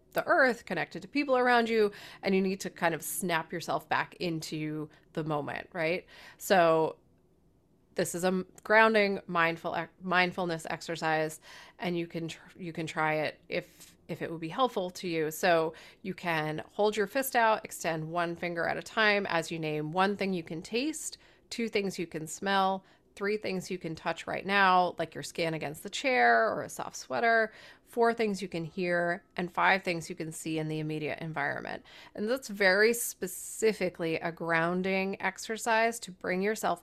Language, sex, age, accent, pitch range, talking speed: English, female, 30-49, American, 165-200 Hz, 180 wpm